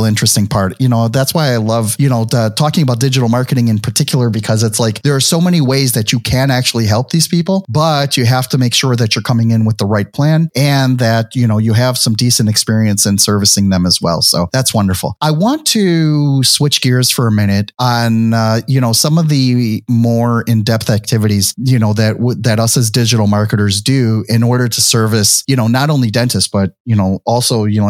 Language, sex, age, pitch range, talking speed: English, male, 30-49, 110-135 Hz, 225 wpm